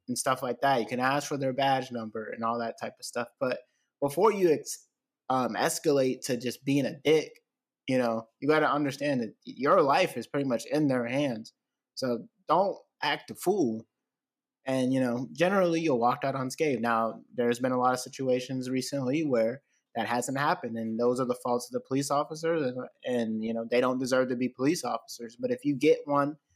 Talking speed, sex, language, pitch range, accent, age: 210 wpm, male, English, 125-165 Hz, American, 20-39